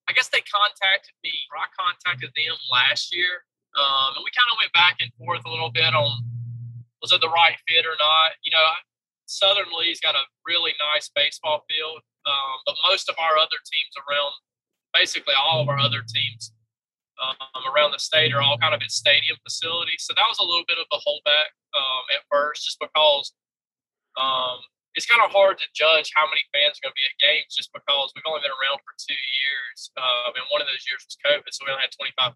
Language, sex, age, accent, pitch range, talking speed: English, male, 20-39, American, 135-180 Hz, 215 wpm